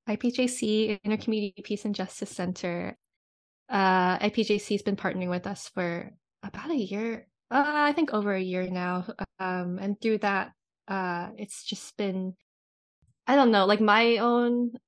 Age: 10-29